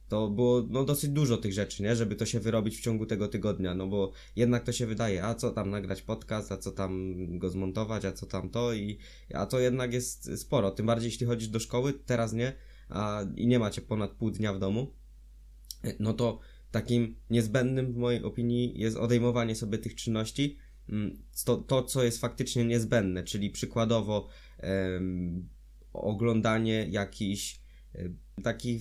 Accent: native